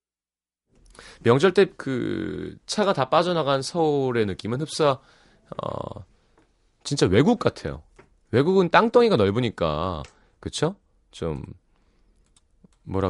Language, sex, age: Korean, male, 30-49